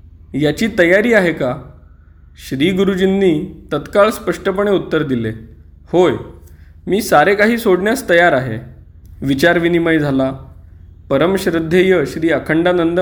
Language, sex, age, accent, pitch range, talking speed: Marathi, male, 20-39, native, 110-185 Hz, 100 wpm